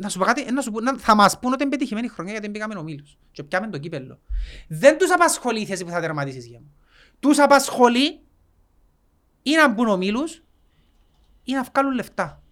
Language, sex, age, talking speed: Greek, male, 30-49, 175 wpm